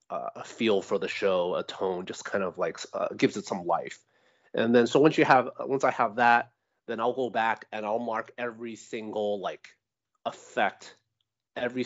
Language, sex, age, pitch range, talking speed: English, male, 30-49, 110-150 Hz, 195 wpm